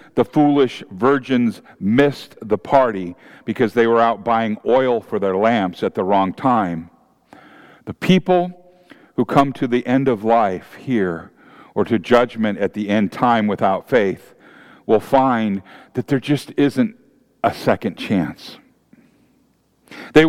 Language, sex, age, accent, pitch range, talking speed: English, male, 50-69, American, 130-175 Hz, 140 wpm